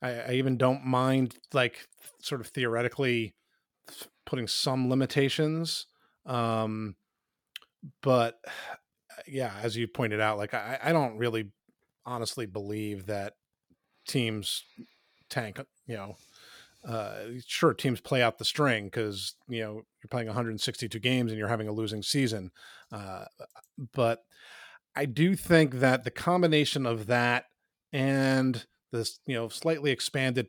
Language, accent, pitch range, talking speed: English, American, 115-140 Hz, 130 wpm